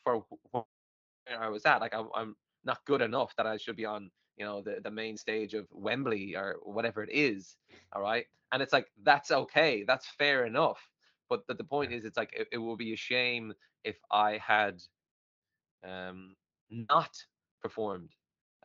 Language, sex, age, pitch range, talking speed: English, male, 20-39, 100-120 Hz, 175 wpm